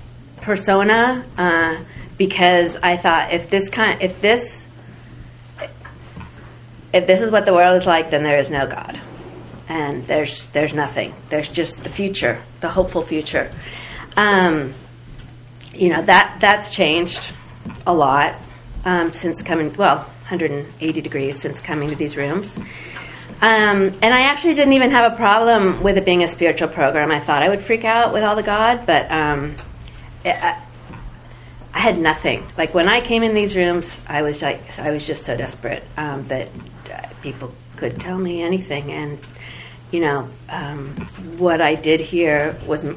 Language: English